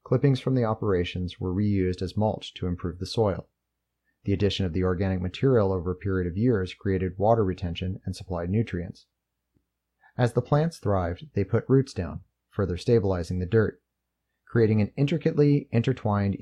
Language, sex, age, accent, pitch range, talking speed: English, male, 30-49, American, 85-110 Hz, 165 wpm